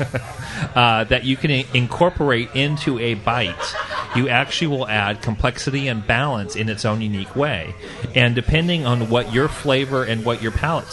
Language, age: English, 40-59